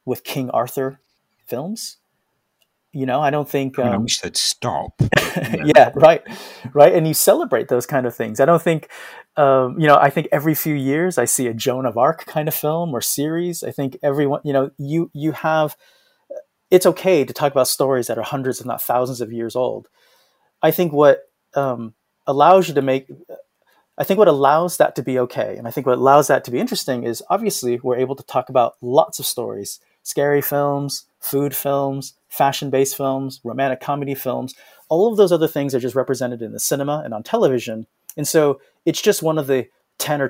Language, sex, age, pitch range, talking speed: English, male, 30-49, 130-155 Hz, 200 wpm